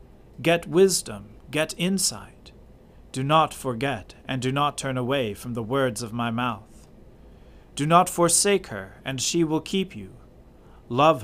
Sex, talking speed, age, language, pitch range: male, 150 wpm, 40-59, English, 115-160 Hz